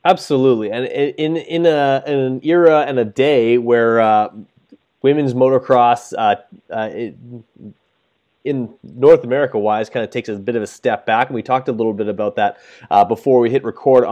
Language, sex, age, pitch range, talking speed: English, male, 20-39, 115-130 Hz, 185 wpm